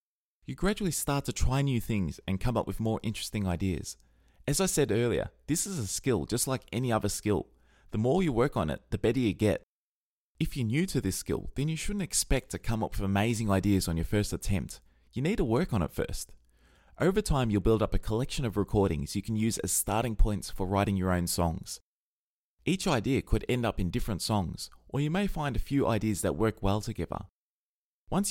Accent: Australian